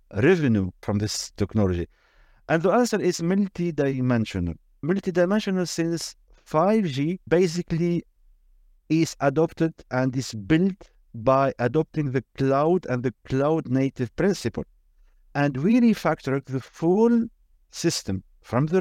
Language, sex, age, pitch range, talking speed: English, male, 50-69, 120-180 Hz, 110 wpm